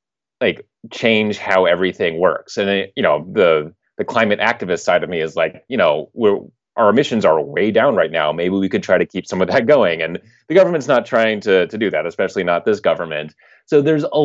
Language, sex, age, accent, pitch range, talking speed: English, male, 30-49, American, 95-120 Hz, 225 wpm